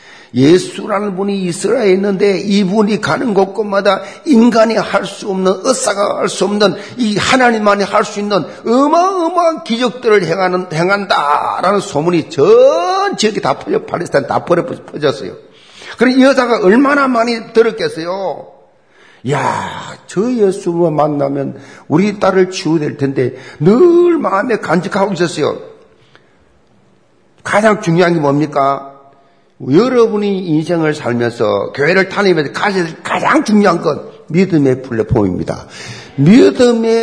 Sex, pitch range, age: male, 175-230 Hz, 50-69